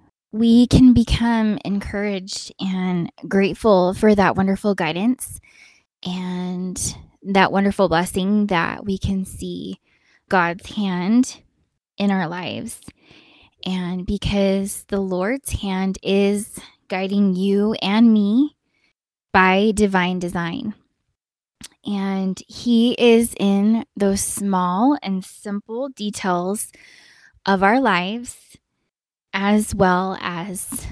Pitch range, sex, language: 185-215 Hz, female, English